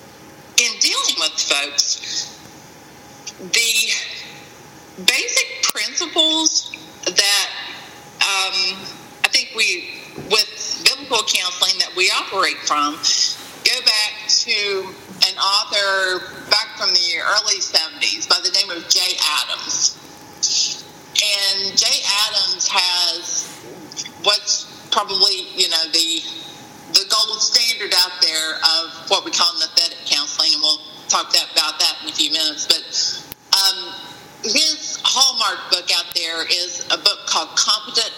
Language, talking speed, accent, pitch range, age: English, 105 wpm, American, 170-225 Hz, 50-69